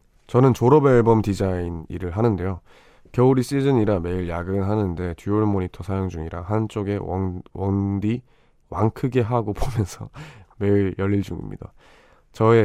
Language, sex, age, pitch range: Korean, male, 20-39, 90-120 Hz